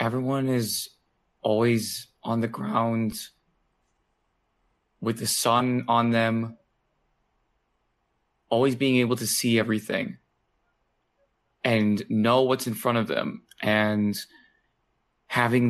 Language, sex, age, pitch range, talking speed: English, male, 20-39, 110-130 Hz, 100 wpm